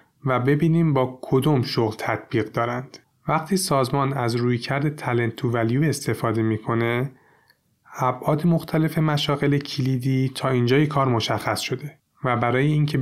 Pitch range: 120-145 Hz